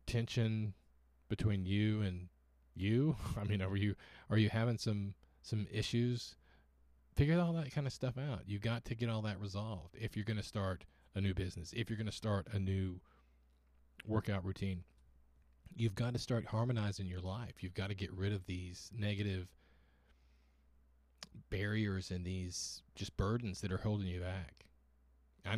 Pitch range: 65-105 Hz